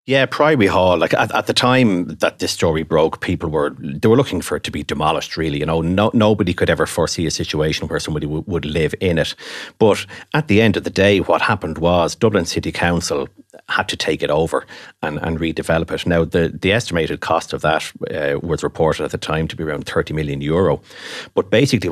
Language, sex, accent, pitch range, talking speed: English, male, Irish, 80-95 Hz, 225 wpm